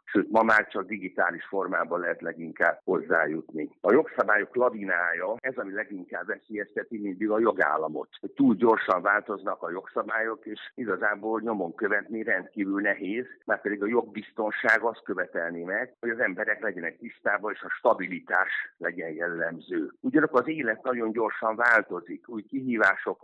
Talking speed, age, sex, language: 140 wpm, 60-79, male, Hungarian